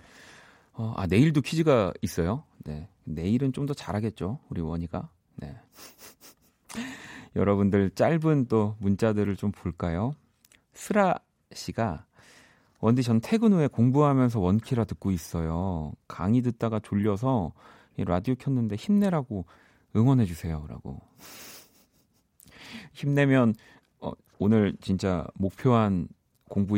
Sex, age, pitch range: male, 40-59, 90-125 Hz